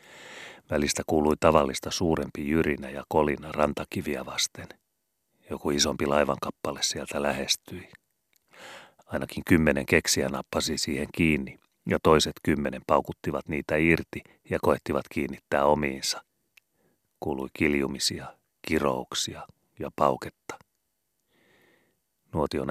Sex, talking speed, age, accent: male, 95 wpm, 30-49, native